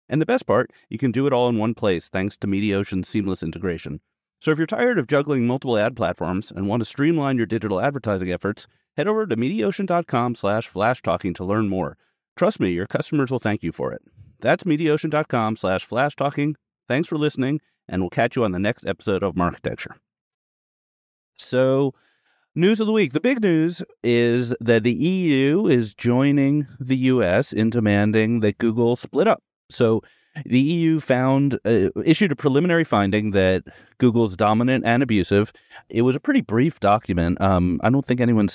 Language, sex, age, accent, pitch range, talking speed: English, male, 30-49, American, 100-140 Hz, 180 wpm